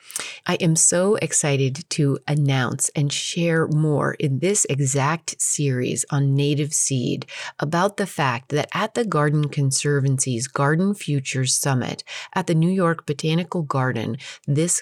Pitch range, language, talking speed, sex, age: 135-165 Hz, English, 140 wpm, female, 30-49